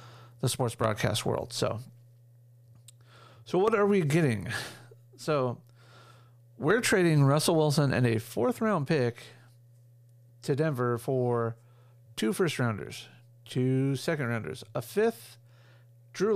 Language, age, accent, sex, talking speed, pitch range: English, 40-59, American, male, 115 wpm, 120-135 Hz